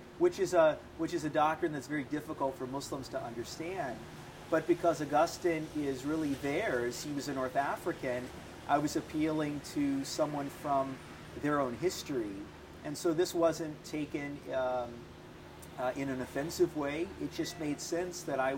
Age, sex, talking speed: 40-59, male, 165 wpm